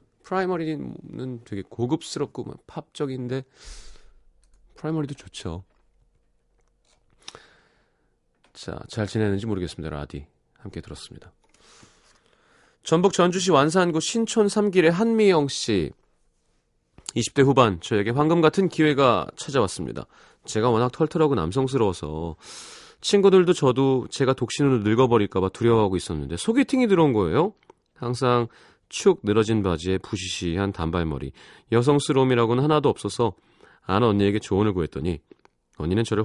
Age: 30-49